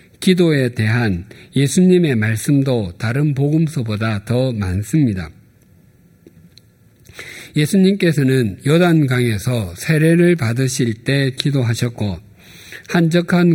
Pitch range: 115-155 Hz